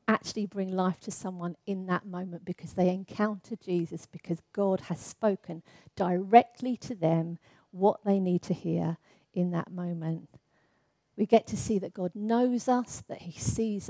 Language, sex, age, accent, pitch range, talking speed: English, female, 40-59, British, 175-230 Hz, 165 wpm